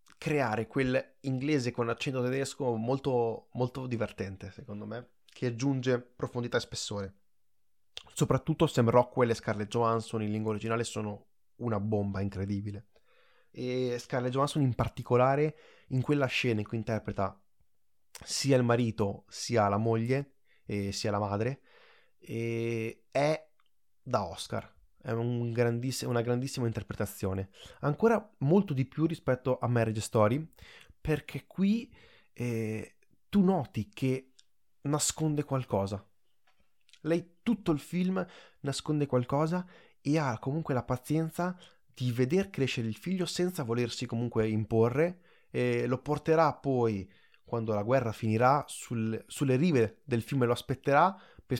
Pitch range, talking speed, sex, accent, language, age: 110-140 Hz, 130 wpm, male, native, Italian, 20-39